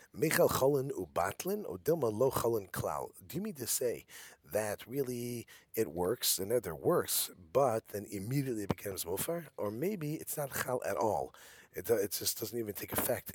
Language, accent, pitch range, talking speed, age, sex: English, American, 95-135 Hz, 150 wpm, 40-59, male